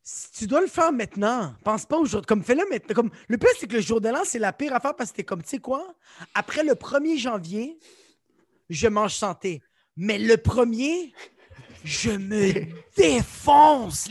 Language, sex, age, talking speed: French, male, 30-49, 200 wpm